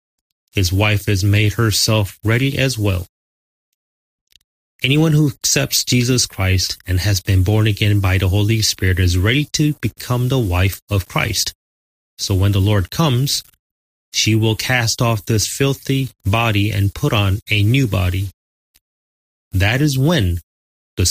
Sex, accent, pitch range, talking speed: male, American, 95-125 Hz, 150 wpm